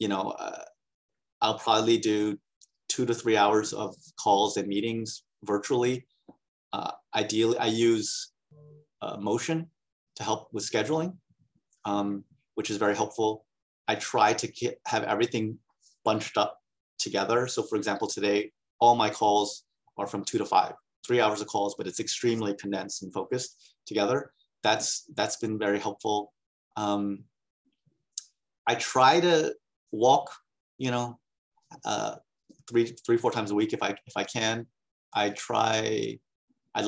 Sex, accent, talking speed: male, American, 145 wpm